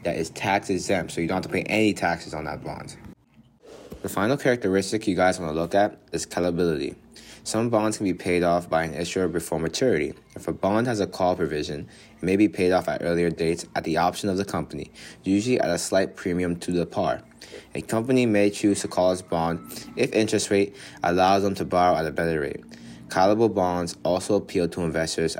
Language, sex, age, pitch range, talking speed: English, male, 20-39, 85-100 Hz, 215 wpm